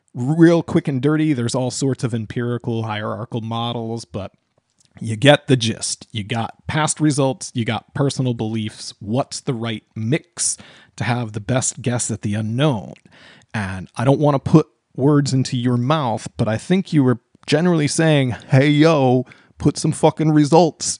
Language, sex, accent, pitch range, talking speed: English, male, American, 120-150 Hz, 170 wpm